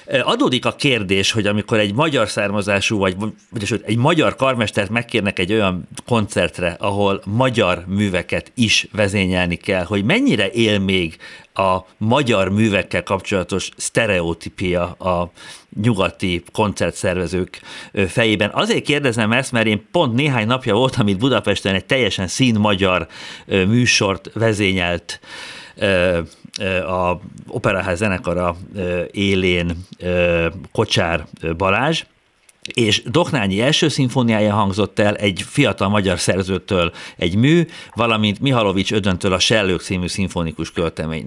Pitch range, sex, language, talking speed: 90-115 Hz, male, Hungarian, 115 wpm